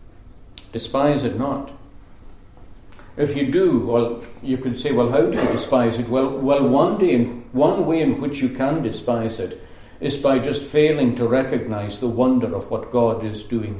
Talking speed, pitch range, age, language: 185 wpm, 105-140 Hz, 60-79, English